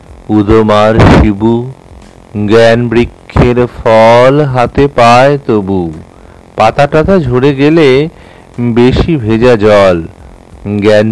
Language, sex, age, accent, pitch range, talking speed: Bengali, male, 50-69, native, 95-130 Hz, 75 wpm